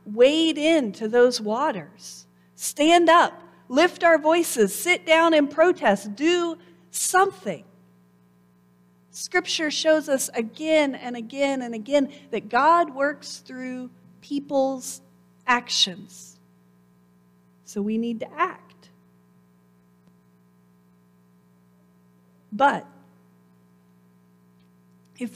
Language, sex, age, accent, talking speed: English, female, 50-69, American, 85 wpm